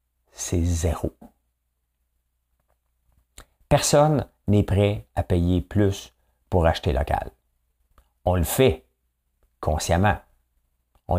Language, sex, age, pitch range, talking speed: French, male, 50-69, 65-95 Hz, 85 wpm